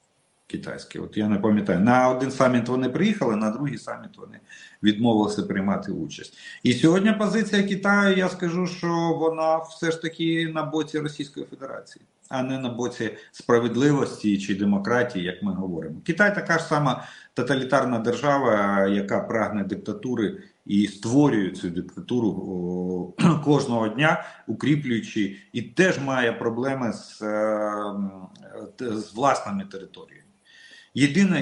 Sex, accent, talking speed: male, native, 125 wpm